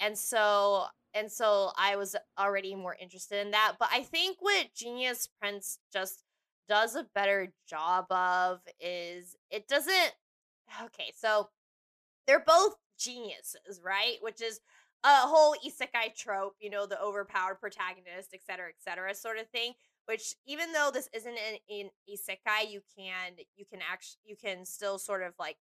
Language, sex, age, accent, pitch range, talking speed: English, female, 20-39, American, 200-260 Hz, 160 wpm